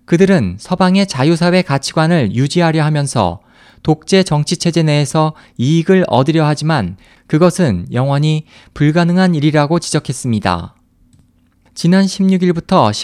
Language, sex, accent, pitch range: Korean, male, native, 125-175 Hz